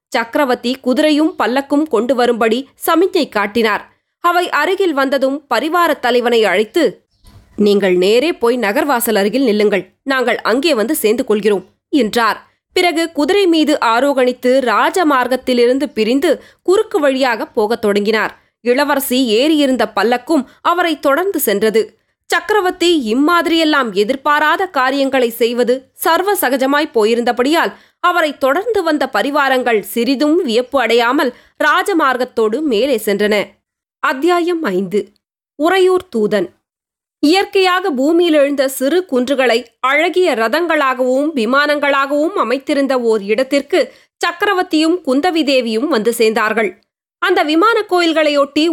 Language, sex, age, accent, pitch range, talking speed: Tamil, female, 20-39, native, 235-325 Hz, 100 wpm